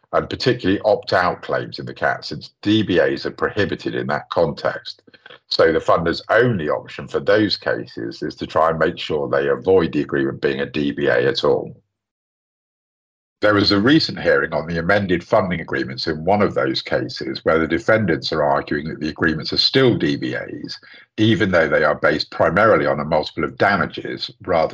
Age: 50-69